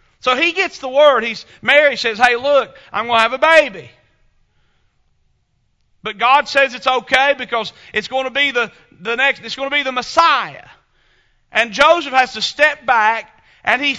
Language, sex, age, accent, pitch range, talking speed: English, male, 40-59, American, 195-275 Hz, 170 wpm